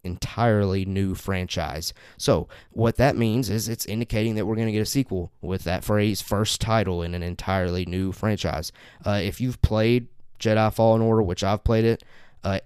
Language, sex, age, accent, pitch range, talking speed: English, male, 20-39, American, 90-110 Hz, 185 wpm